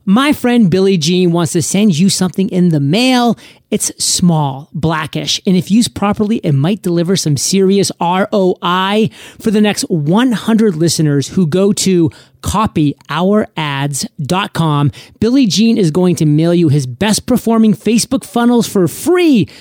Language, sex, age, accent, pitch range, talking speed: English, male, 30-49, American, 165-215 Hz, 145 wpm